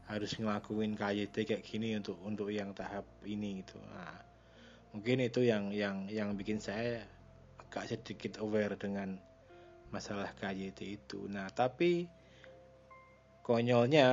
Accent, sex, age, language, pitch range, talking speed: native, male, 20-39, Indonesian, 100-125 Hz, 125 wpm